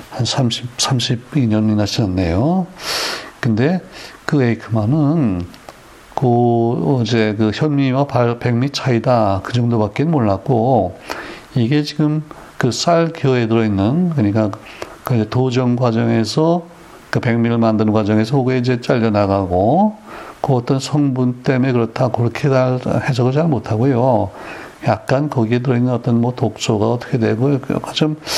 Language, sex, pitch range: Korean, male, 110-135 Hz